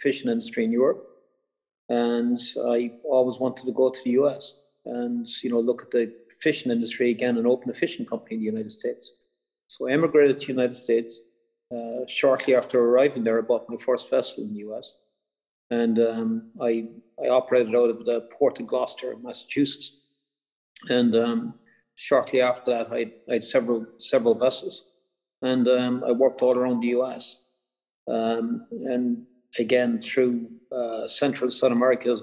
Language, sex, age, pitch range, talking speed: English, male, 40-59, 120-140 Hz, 170 wpm